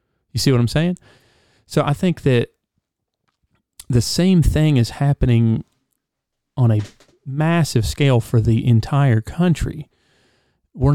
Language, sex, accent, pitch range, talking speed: English, male, American, 115-150 Hz, 125 wpm